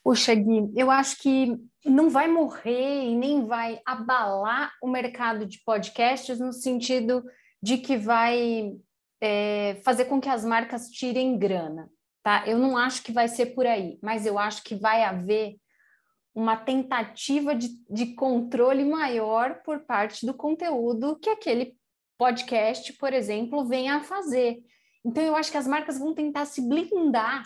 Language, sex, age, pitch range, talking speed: Portuguese, female, 20-39, 215-265 Hz, 155 wpm